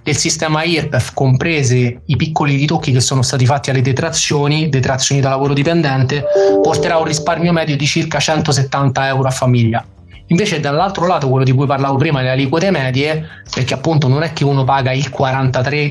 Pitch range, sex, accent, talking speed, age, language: 130-160 Hz, male, native, 180 wpm, 20-39, Italian